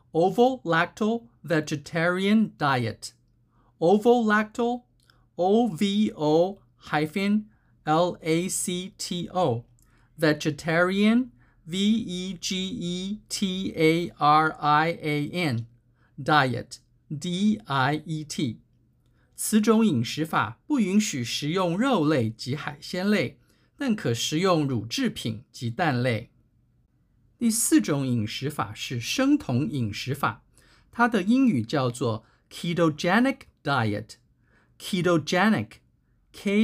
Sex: male